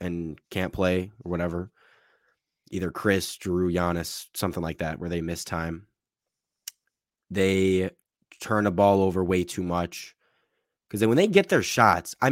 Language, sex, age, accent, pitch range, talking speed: English, male, 20-39, American, 90-115 Hz, 160 wpm